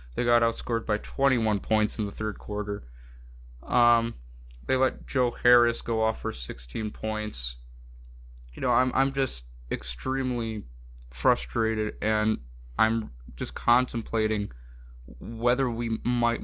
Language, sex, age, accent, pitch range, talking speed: English, male, 20-39, American, 100-120 Hz, 125 wpm